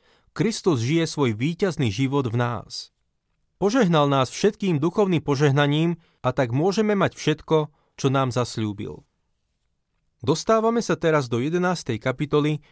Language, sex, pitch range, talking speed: Slovak, male, 130-160 Hz, 125 wpm